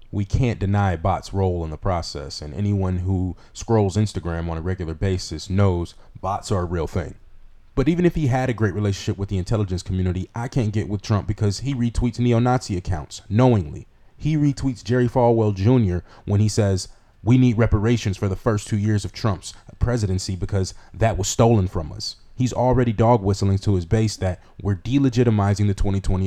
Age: 30-49